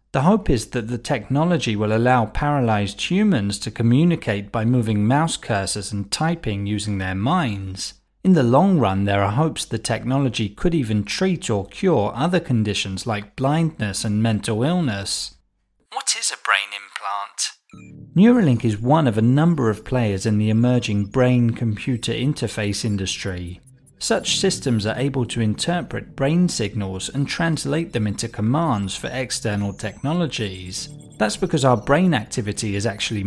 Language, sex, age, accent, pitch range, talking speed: English, male, 30-49, British, 105-150 Hz, 150 wpm